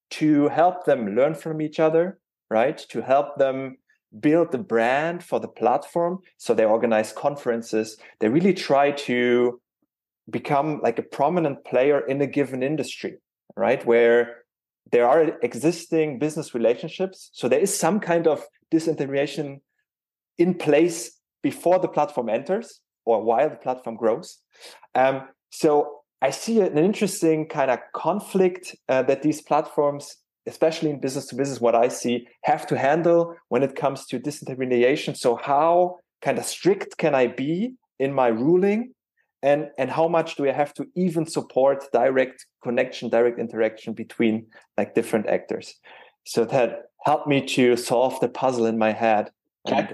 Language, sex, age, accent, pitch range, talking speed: English, male, 30-49, German, 125-165 Hz, 155 wpm